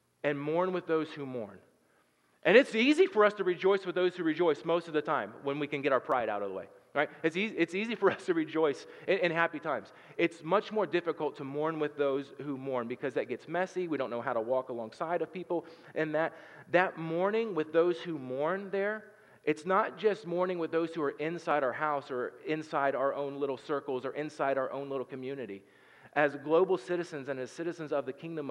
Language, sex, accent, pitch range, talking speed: English, male, American, 140-175 Hz, 225 wpm